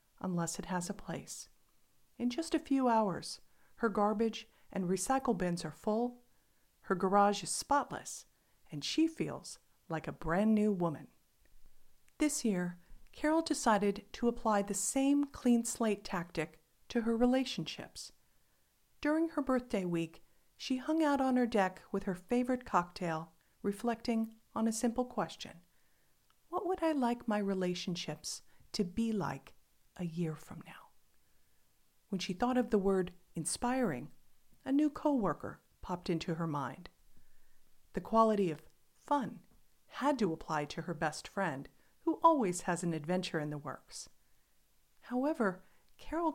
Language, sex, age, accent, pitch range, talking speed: English, female, 50-69, American, 175-250 Hz, 140 wpm